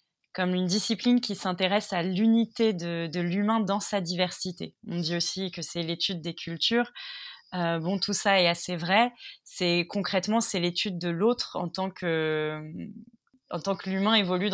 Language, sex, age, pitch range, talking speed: French, female, 20-39, 170-195 Hz, 175 wpm